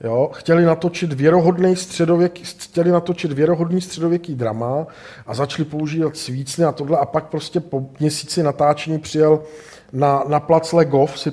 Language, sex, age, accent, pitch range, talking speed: Czech, male, 50-69, native, 150-180 Hz, 150 wpm